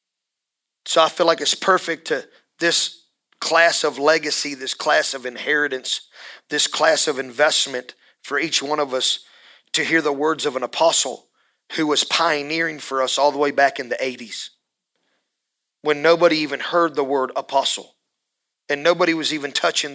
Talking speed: 165 wpm